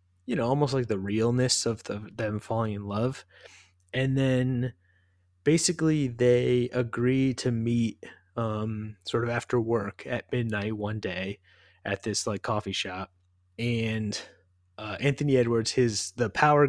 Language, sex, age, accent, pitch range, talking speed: English, male, 20-39, American, 100-125 Hz, 145 wpm